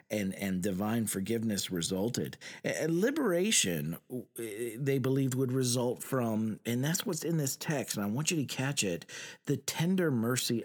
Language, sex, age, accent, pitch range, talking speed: English, male, 40-59, American, 115-170 Hz, 160 wpm